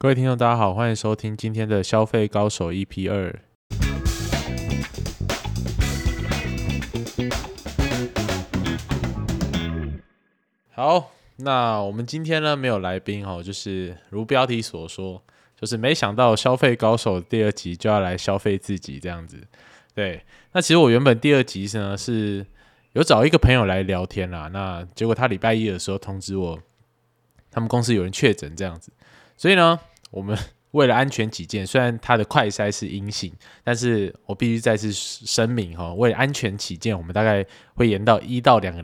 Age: 20-39